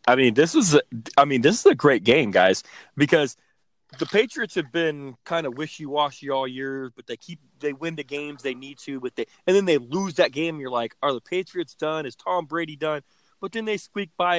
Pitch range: 130-175 Hz